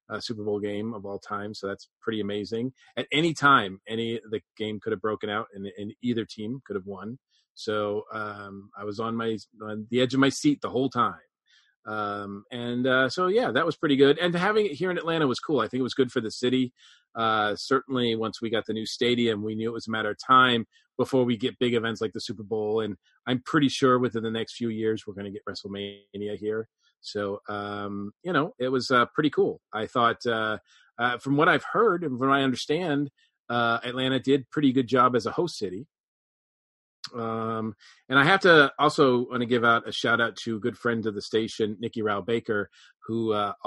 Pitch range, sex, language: 105-125 Hz, male, English